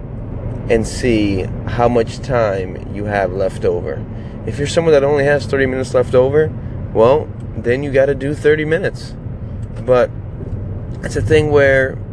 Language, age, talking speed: English, 20-39, 155 wpm